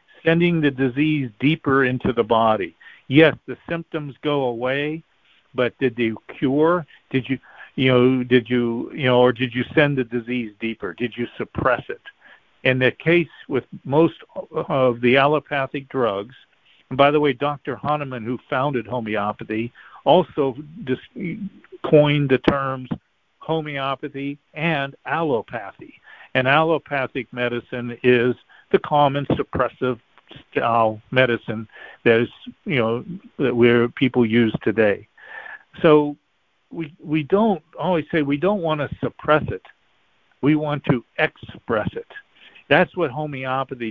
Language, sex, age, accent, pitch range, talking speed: English, male, 60-79, American, 125-155 Hz, 135 wpm